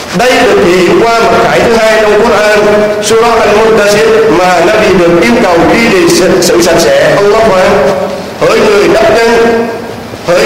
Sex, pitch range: male, 185-230 Hz